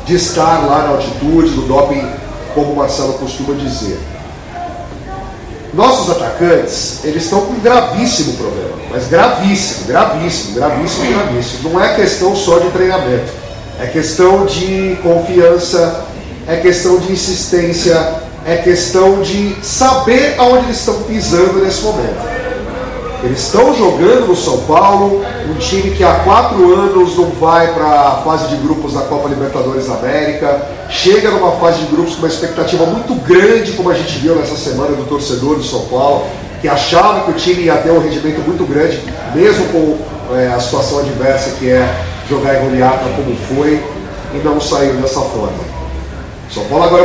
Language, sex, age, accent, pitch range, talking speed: Portuguese, male, 40-59, Brazilian, 140-185 Hz, 160 wpm